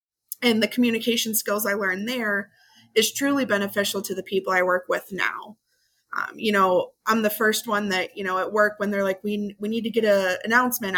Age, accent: 20-39, American